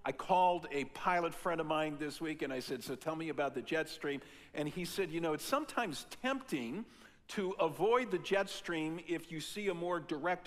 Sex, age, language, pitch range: male, 50-69, English, 155-200 Hz